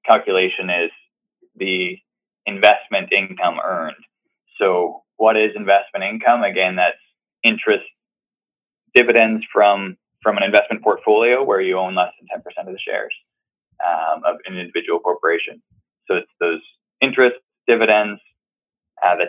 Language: English